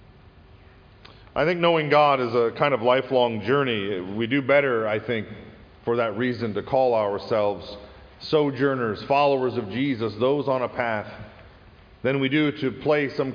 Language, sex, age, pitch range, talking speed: English, male, 40-59, 115-145 Hz, 155 wpm